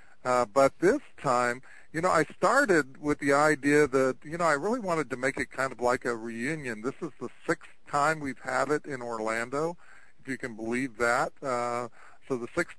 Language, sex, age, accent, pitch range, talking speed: English, male, 40-59, American, 120-145 Hz, 200 wpm